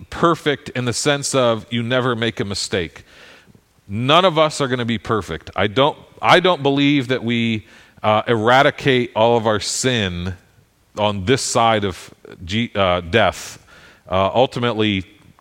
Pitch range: 105-135 Hz